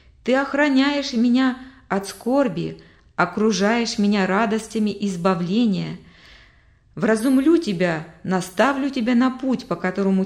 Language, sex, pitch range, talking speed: Russian, female, 180-245 Hz, 105 wpm